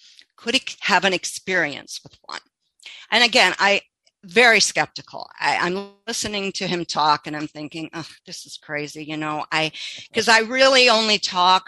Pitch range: 160-215 Hz